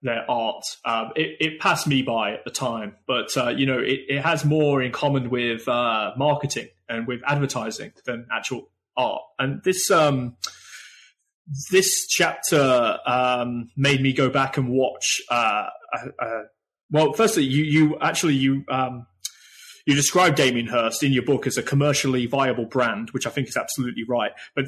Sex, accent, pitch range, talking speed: male, British, 125-150 Hz, 170 wpm